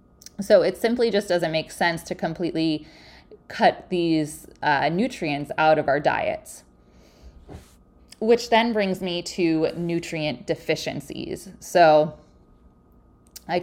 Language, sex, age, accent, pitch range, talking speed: English, female, 20-39, American, 155-185 Hz, 115 wpm